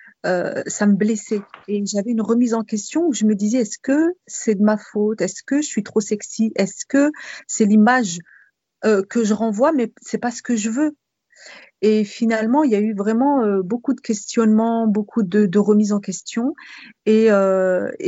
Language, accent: French, French